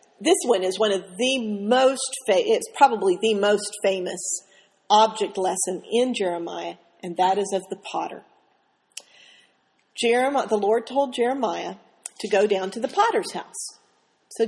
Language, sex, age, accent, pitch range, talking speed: English, female, 50-69, American, 205-265 Hz, 145 wpm